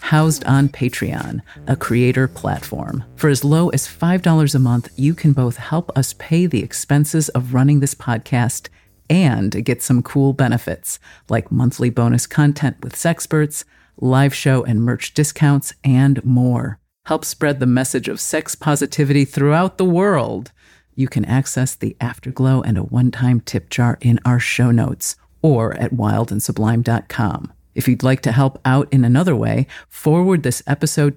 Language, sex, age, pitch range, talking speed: English, female, 50-69, 120-145 Hz, 160 wpm